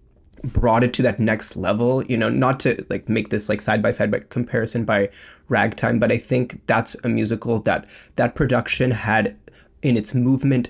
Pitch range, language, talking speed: 115-135 Hz, English, 190 wpm